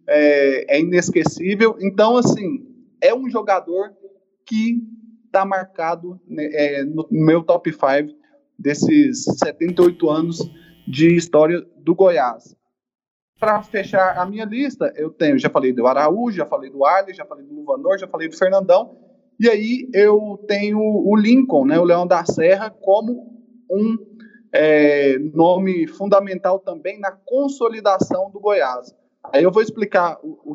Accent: Brazilian